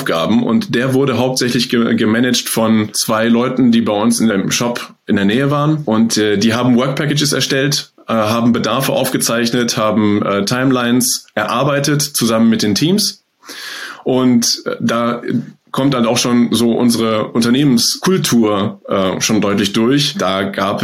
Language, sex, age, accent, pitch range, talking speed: German, male, 20-39, German, 110-135 Hz, 155 wpm